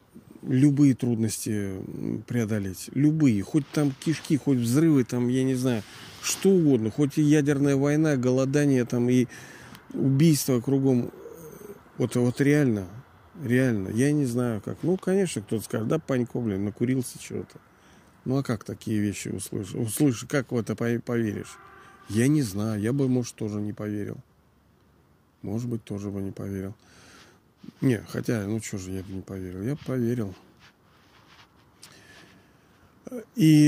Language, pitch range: Russian, 110-135 Hz